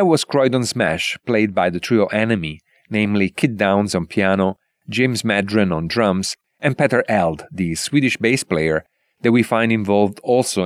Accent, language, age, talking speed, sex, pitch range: Italian, English, 40-59, 165 wpm, male, 90-115 Hz